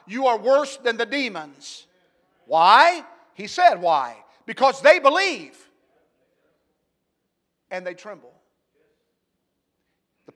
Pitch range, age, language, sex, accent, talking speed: 185-255 Hz, 50-69, English, male, American, 100 wpm